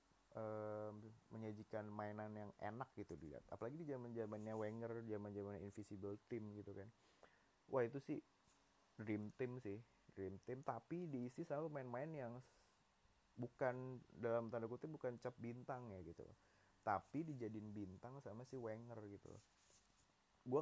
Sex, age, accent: male, 20-39, native